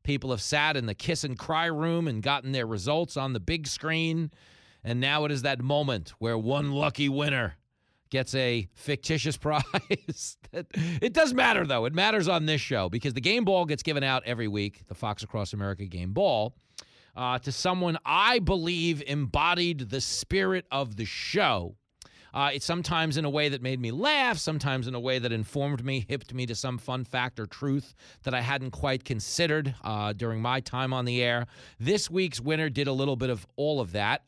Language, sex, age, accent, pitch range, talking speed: English, male, 40-59, American, 120-155 Hz, 195 wpm